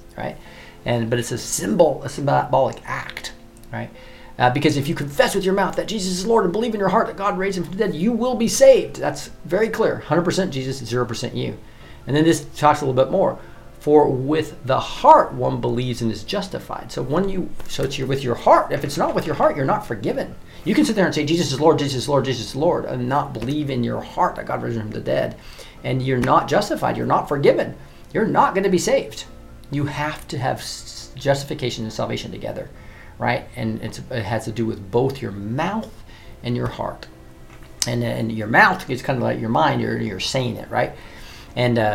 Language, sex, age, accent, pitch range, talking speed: English, male, 40-59, American, 110-155 Hz, 230 wpm